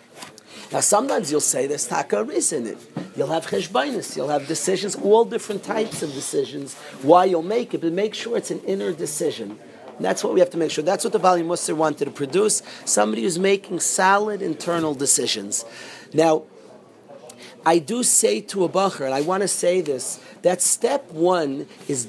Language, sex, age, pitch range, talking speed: English, male, 40-59, 170-220 Hz, 185 wpm